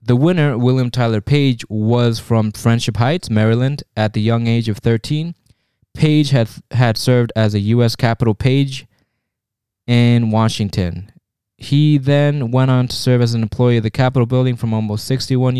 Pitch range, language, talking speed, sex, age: 110-125 Hz, English, 165 wpm, male, 20-39